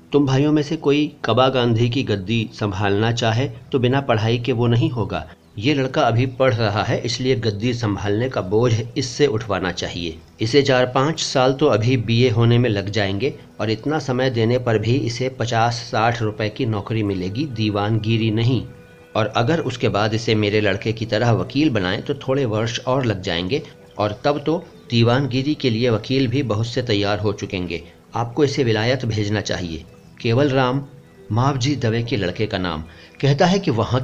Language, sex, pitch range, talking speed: Hindi, male, 105-130 Hz, 185 wpm